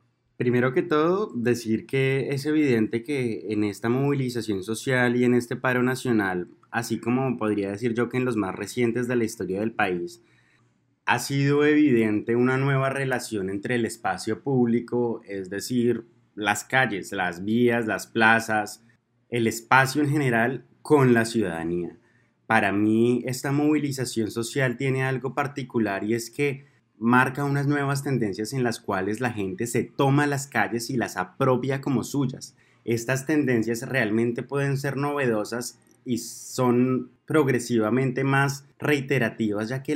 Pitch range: 115-135 Hz